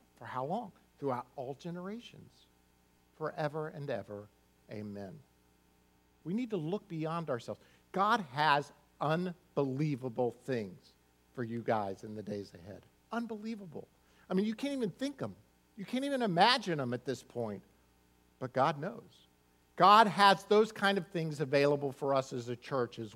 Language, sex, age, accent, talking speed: English, male, 50-69, American, 155 wpm